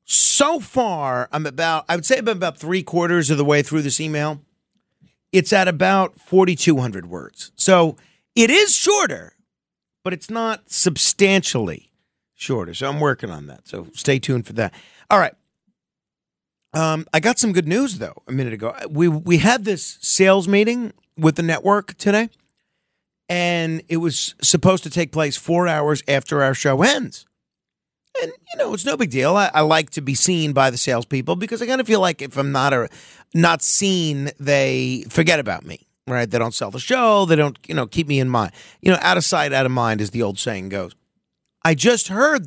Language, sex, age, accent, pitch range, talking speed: English, male, 40-59, American, 140-190 Hz, 195 wpm